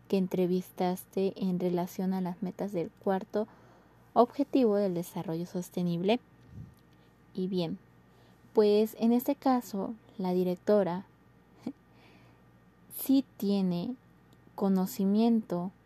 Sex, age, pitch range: female, 20-39, 175-205 Hz